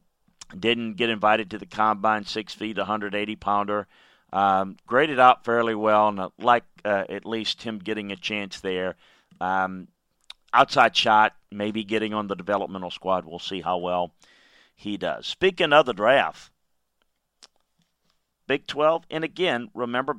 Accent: American